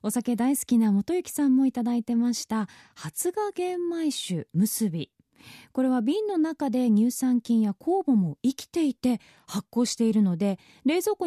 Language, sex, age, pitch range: Japanese, female, 20-39, 185-295 Hz